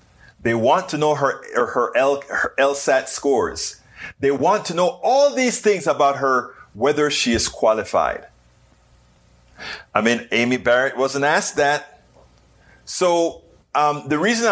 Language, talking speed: English, 140 wpm